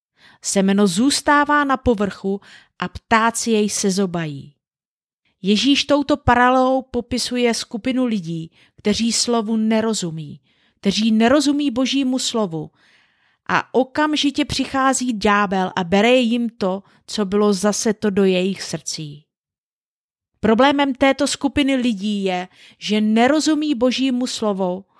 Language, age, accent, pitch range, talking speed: Czech, 30-49, native, 195-255 Hz, 110 wpm